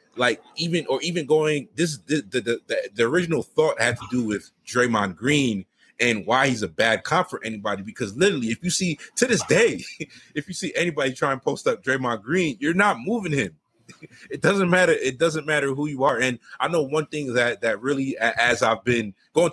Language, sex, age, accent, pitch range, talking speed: English, male, 30-49, American, 115-155 Hz, 210 wpm